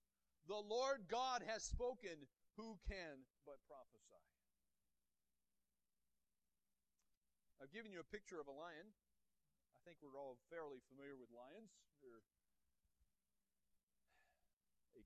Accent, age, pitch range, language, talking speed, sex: American, 40-59, 120-185 Hz, English, 110 wpm, male